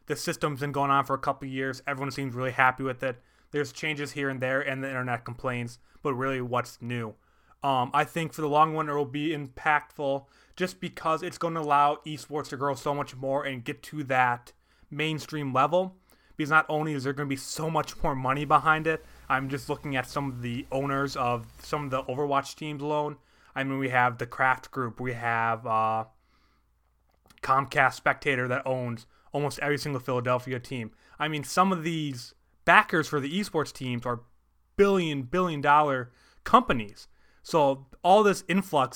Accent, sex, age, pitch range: American, male, 20-39, 125-150 Hz